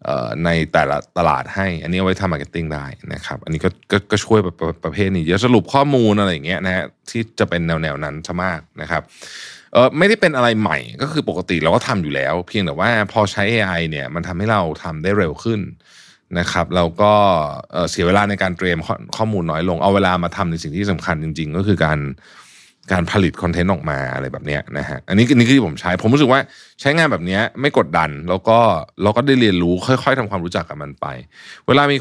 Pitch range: 85-110 Hz